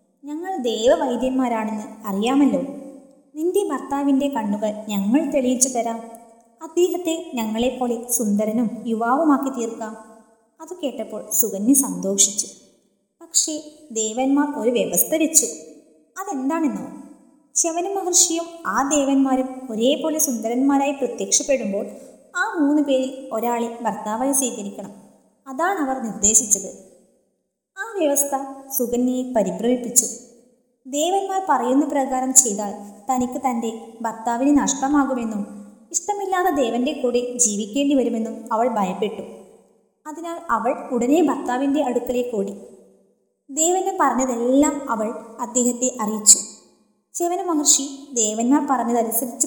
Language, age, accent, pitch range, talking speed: Malayalam, 20-39, native, 225-285 Hz, 90 wpm